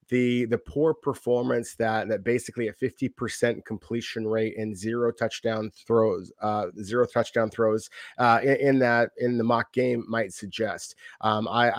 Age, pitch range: 30-49, 115-135 Hz